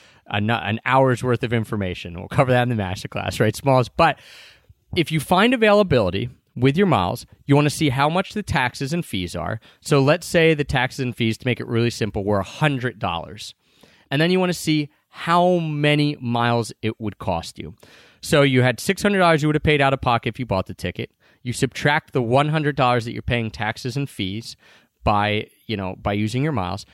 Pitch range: 110-150 Hz